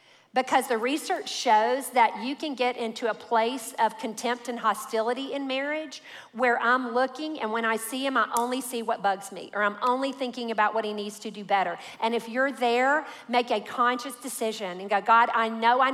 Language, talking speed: English, 210 wpm